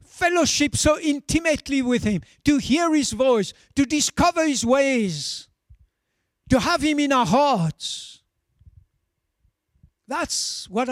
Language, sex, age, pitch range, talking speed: English, male, 60-79, 165-270 Hz, 115 wpm